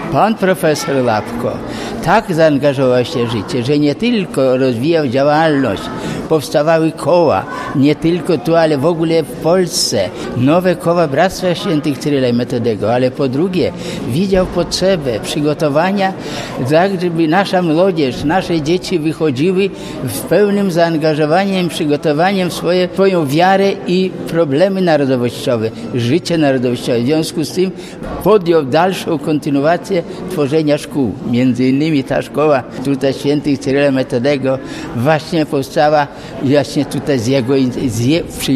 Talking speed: 120 wpm